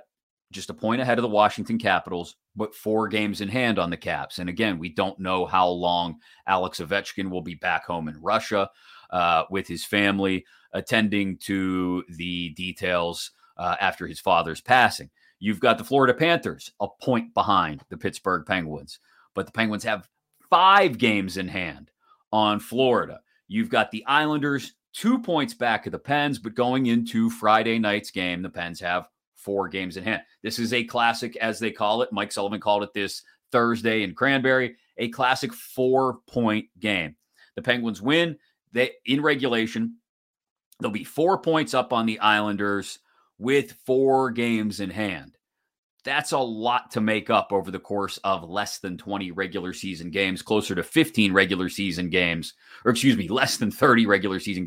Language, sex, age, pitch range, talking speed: English, male, 30-49, 95-120 Hz, 170 wpm